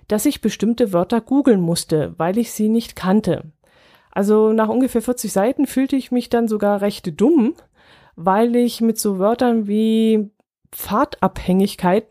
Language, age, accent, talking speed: German, 30-49, German, 150 wpm